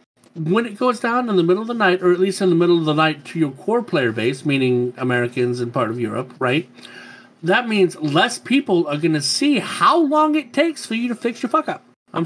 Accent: American